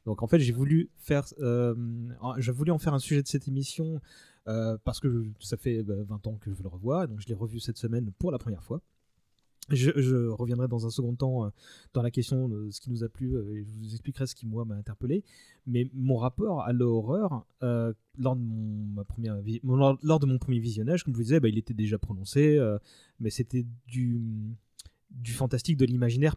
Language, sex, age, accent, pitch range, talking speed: French, male, 30-49, French, 110-135 Hz, 230 wpm